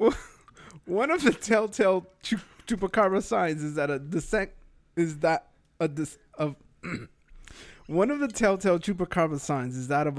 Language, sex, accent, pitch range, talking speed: English, male, American, 130-190 Hz, 145 wpm